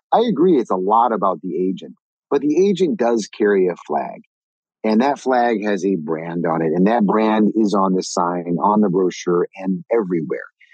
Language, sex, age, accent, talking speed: English, male, 50-69, American, 195 wpm